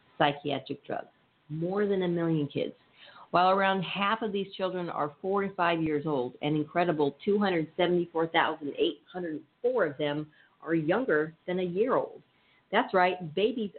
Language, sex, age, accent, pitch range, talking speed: English, female, 50-69, American, 145-180 Hz, 145 wpm